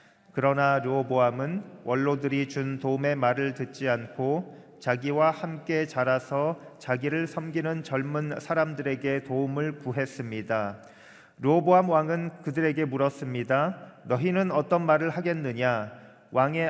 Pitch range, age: 130-155 Hz, 40-59